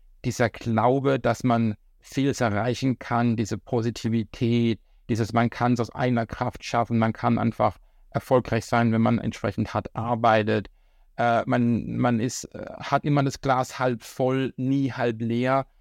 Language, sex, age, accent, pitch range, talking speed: German, male, 60-79, German, 110-125 Hz, 150 wpm